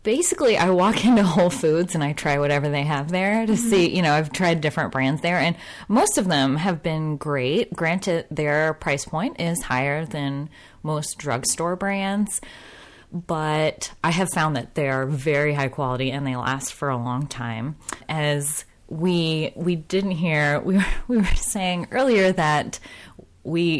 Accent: American